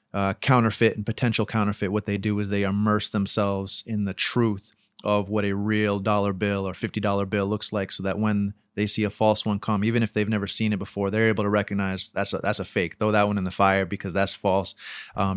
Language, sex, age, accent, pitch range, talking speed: English, male, 30-49, American, 105-120 Hz, 240 wpm